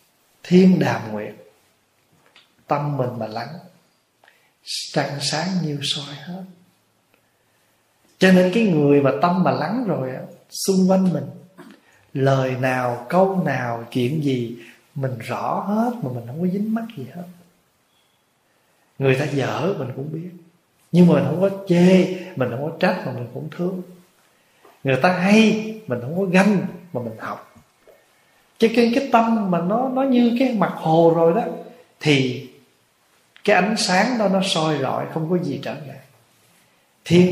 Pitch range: 135-185 Hz